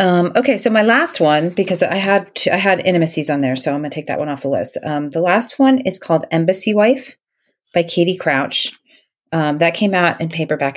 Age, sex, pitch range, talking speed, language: 30-49, female, 145-190 Hz, 230 wpm, English